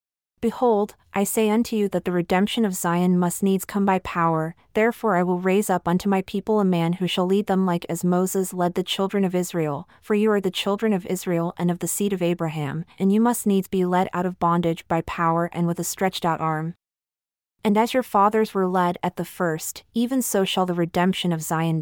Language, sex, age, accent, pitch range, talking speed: English, female, 30-49, American, 170-205 Hz, 230 wpm